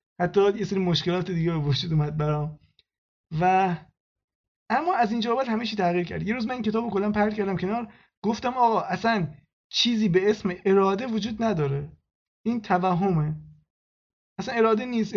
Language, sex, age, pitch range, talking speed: Persian, male, 20-39, 160-215 Hz, 155 wpm